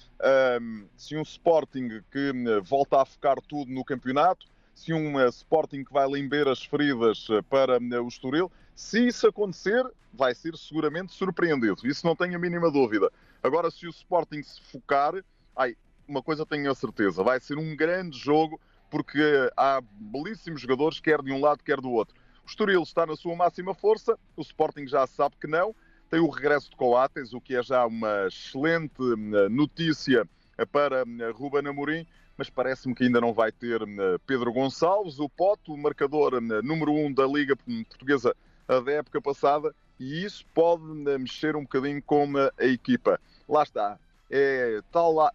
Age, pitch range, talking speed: 30-49, 130-165 Hz, 160 wpm